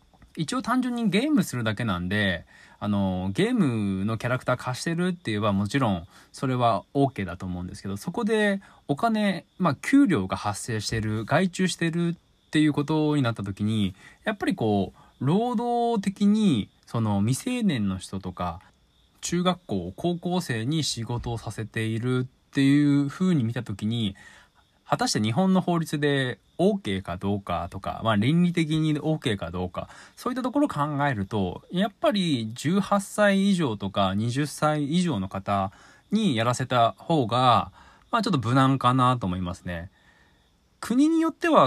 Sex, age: male, 20-39